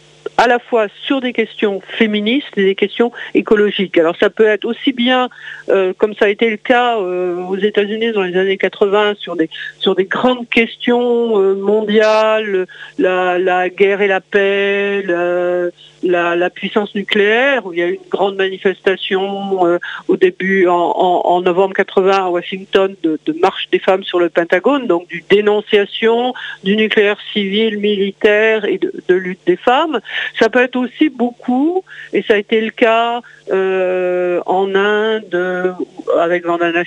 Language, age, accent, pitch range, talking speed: French, 50-69, French, 185-240 Hz, 170 wpm